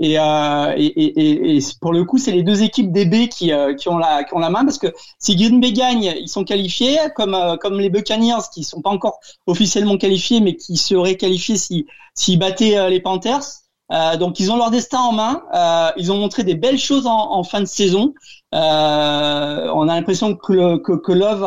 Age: 40-59